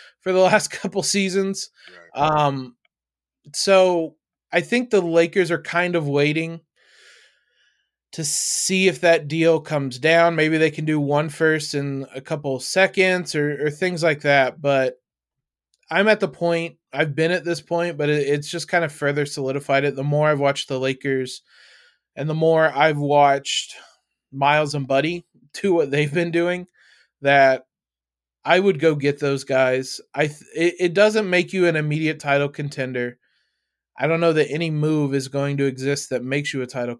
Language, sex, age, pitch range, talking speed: English, male, 20-39, 135-165 Hz, 175 wpm